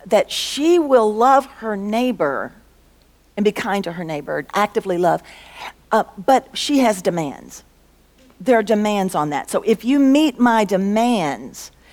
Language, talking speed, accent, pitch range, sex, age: English, 150 wpm, American, 180-245 Hz, female, 50-69